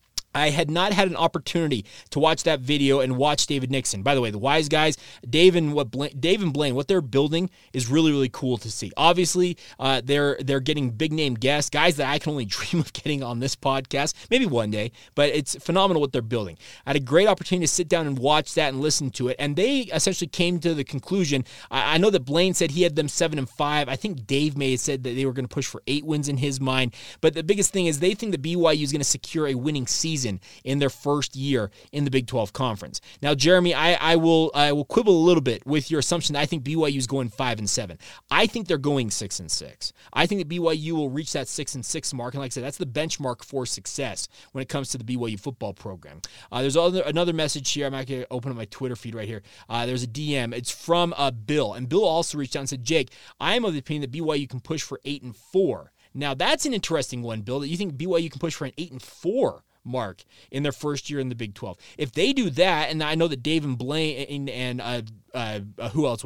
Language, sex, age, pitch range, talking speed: English, male, 30-49, 130-160 Hz, 265 wpm